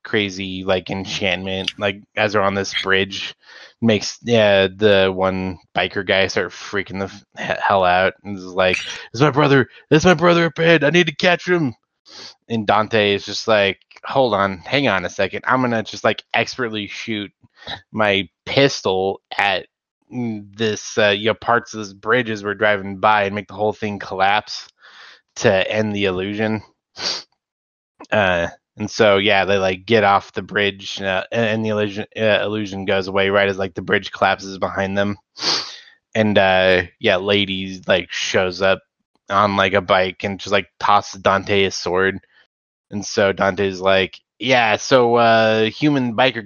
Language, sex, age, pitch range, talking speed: English, male, 20-39, 95-110 Hz, 170 wpm